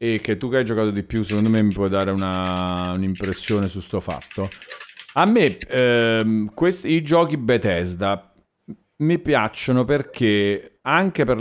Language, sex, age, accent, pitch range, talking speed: Italian, male, 40-59, native, 105-145 Hz, 160 wpm